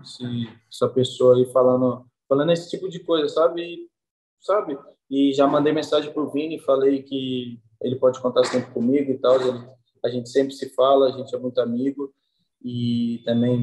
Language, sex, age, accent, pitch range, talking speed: Portuguese, male, 20-39, Brazilian, 125-135 Hz, 175 wpm